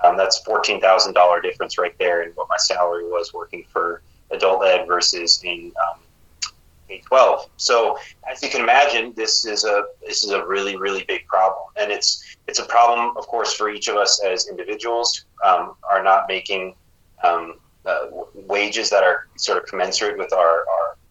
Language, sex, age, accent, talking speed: English, male, 30-49, American, 180 wpm